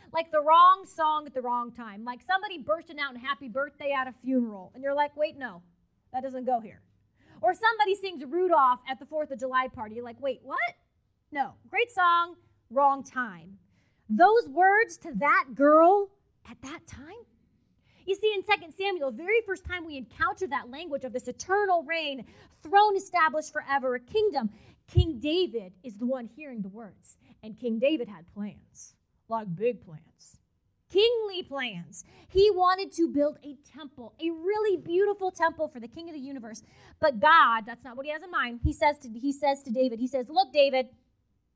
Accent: American